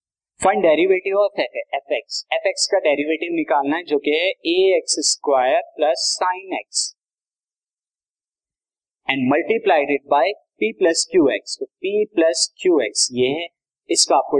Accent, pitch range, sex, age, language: native, 150-195 Hz, male, 20-39, Hindi